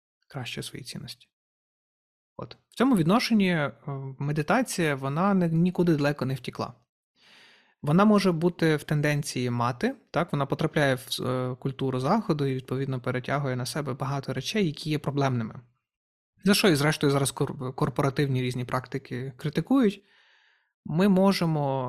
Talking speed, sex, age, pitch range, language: 125 wpm, male, 30-49, 130-165 Hz, Ukrainian